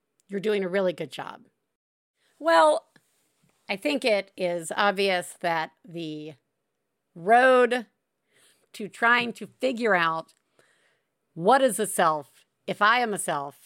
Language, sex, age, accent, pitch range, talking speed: English, female, 50-69, American, 175-225 Hz, 125 wpm